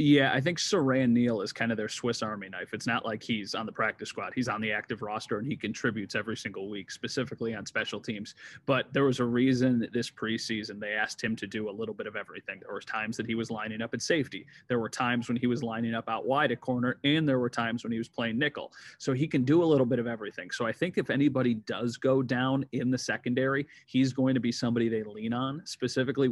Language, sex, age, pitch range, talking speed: English, male, 30-49, 110-130 Hz, 260 wpm